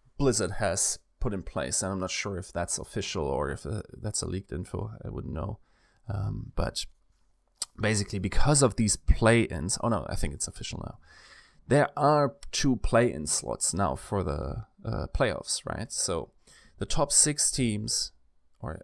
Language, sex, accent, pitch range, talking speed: English, male, German, 95-125 Hz, 170 wpm